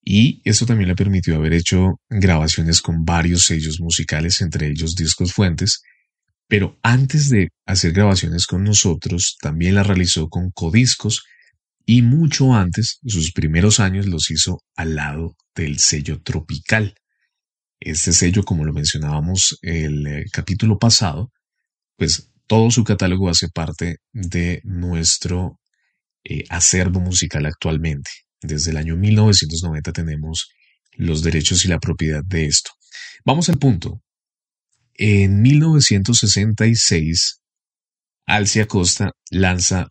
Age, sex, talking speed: 30-49, male, 125 wpm